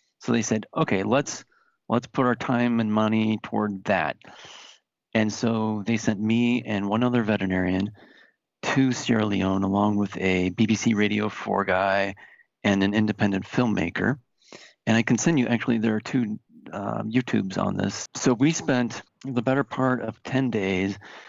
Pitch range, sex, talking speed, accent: 100-115 Hz, male, 165 wpm, American